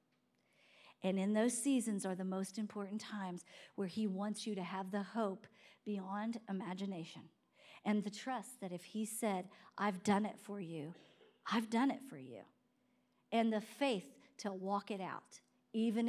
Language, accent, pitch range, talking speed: English, American, 230-355 Hz, 165 wpm